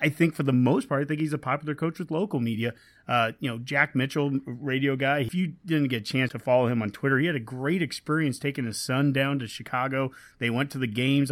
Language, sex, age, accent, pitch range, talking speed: English, male, 30-49, American, 125-155 Hz, 260 wpm